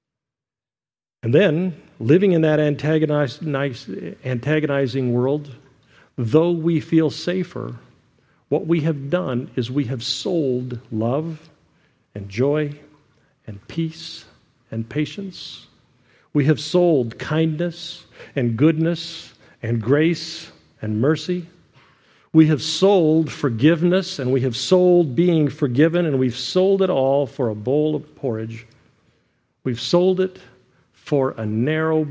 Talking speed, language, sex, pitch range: 115 wpm, English, male, 125-160 Hz